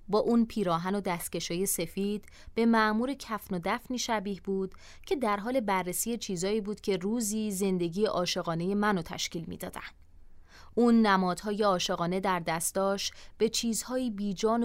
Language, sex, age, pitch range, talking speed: Persian, female, 30-49, 180-230 Hz, 140 wpm